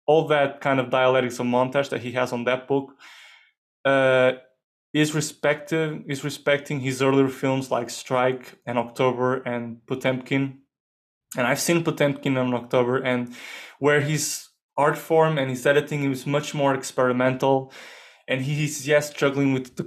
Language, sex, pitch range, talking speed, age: English, male, 125-140 Hz, 155 wpm, 20-39